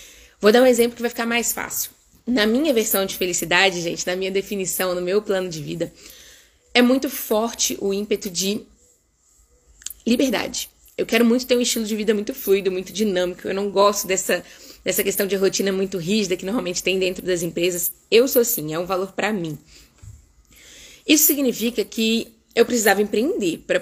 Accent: Brazilian